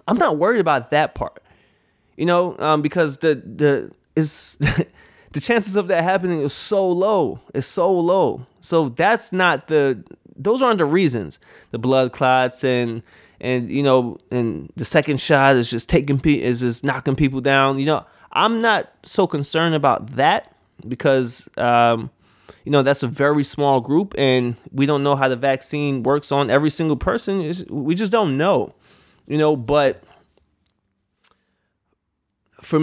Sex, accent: male, American